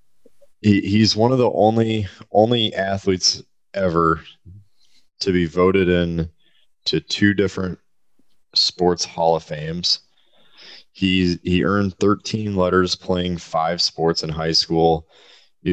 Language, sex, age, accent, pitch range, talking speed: English, male, 20-39, American, 85-95 Hz, 120 wpm